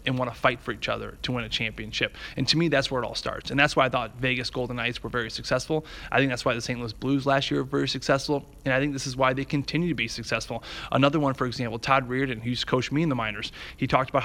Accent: American